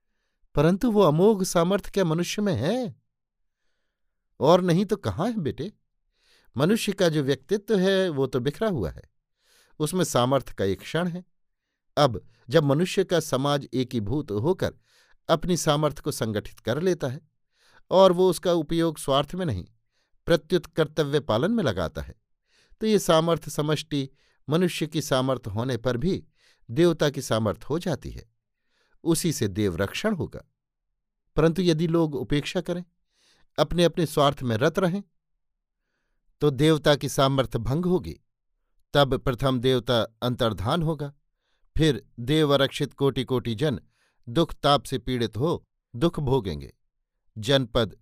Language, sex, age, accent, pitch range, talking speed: Hindi, male, 50-69, native, 130-175 Hz, 140 wpm